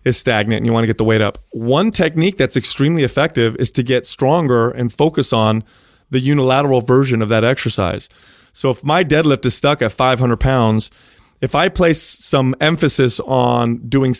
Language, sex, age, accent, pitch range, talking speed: English, male, 30-49, American, 120-155 Hz, 185 wpm